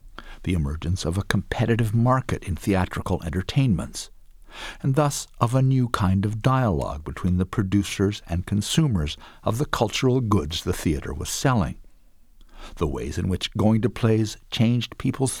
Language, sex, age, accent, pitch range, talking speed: English, male, 60-79, American, 90-125 Hz, 150 wpm